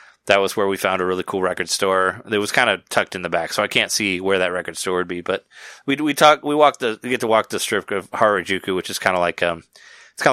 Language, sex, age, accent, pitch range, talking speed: English, male, 30-49, American, 90-125 Hz, 290 wpm